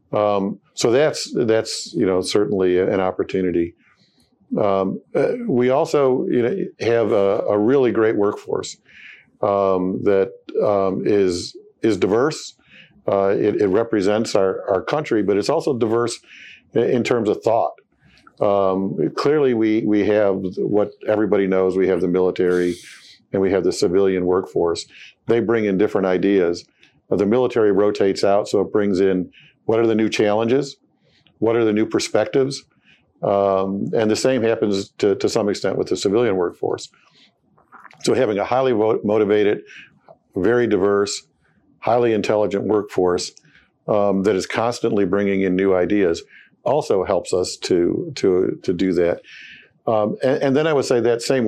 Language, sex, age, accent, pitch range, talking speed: English, male, 50-69, American, 95-130 Hz, 150 wpm